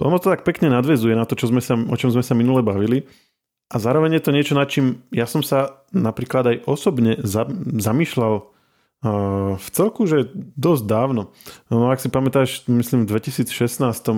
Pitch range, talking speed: 110-125 Hz, 180 wpm